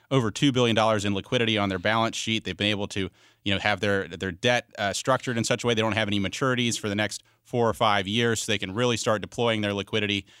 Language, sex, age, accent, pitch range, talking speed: English, male, 30-49, American, 100-115 Hz, 260 wpm